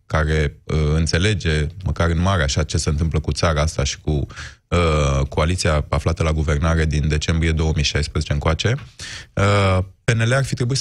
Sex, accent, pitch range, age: male, native, 85-105 Hz, 20-39